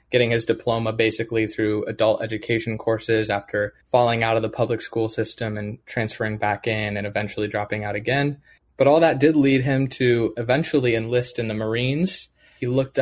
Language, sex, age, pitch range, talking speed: English, male, 20-39, 110-125 Hz, 180 wpm